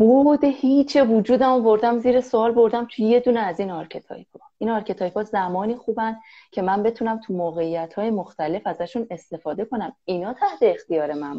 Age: 30-49